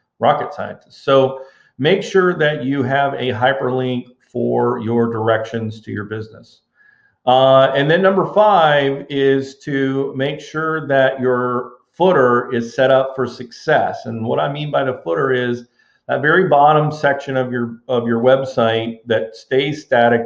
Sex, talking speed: male, 155 wpm